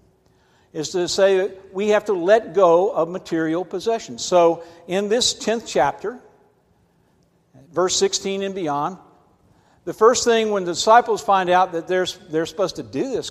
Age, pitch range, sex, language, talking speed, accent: 60-79, 155-205 Hz, male, English, 160 wpm, American